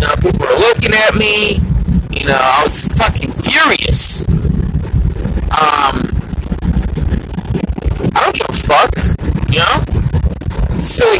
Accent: American